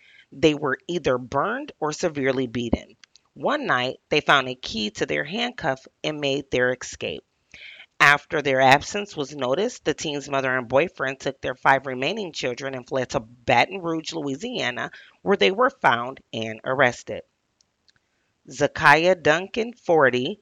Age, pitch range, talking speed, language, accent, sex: 30-49, 125-160 Hz, 145 wpm, English, American, female